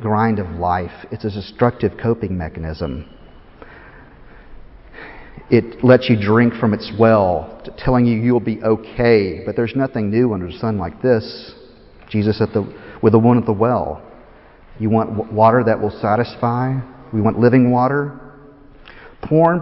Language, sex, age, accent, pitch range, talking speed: English, male, 40-59, American, 105-130 Hz, 150 wpm